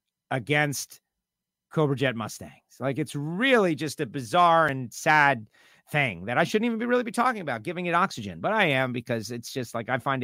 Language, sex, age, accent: English, male, 40-59, American